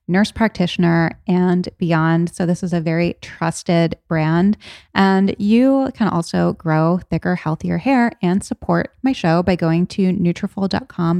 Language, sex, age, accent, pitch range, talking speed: English, female, 20-39, American, 175-200 Hz, 145 wpm